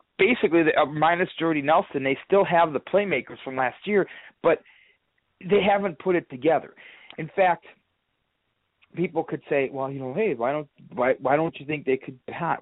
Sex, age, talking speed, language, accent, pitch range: male, 40-59, 190 wpm, English, American, 130-175 Hz